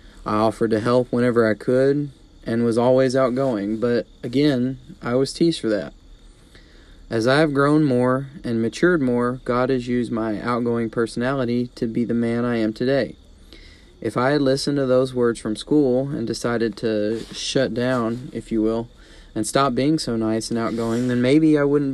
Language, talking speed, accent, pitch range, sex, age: English, 185 wpm, American, 115-135 Hz, male, 30-49